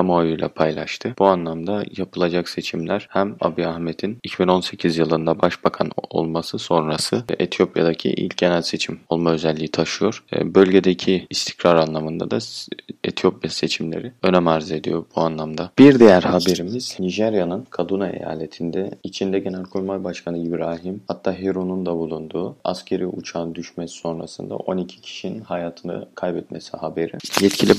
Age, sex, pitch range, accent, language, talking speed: 30-49, male, 80-95 Hz, native, Turkish, 125 wpm